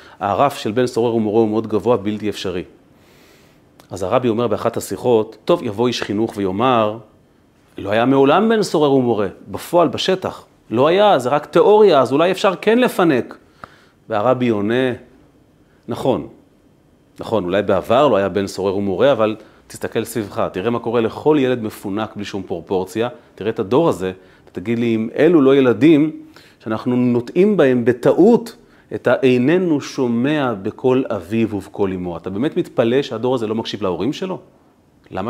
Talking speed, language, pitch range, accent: 155 wpm, Hebrew, 105-135 Hz, native